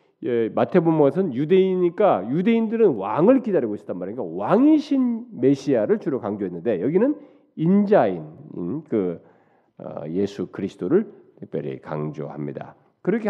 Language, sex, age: Korean, male, 40-59